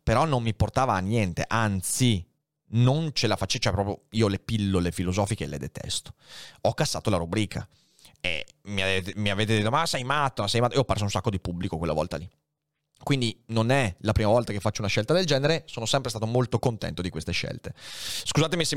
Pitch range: 100-140 Hz